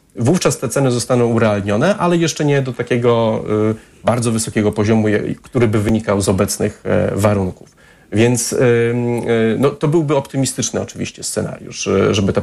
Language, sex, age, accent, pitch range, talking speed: Polish, male, 40-59, native, 110-140 Hz, 130 wpm